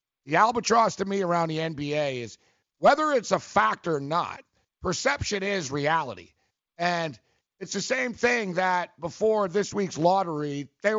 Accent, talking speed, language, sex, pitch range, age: American, 155 wpm, English, male, 145-200 Hz, 50-69